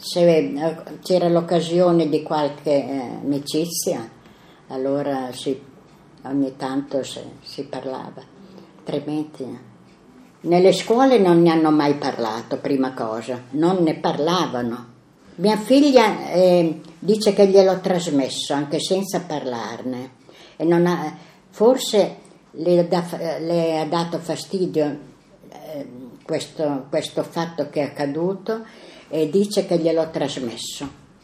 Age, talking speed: 60-79, 115 wpm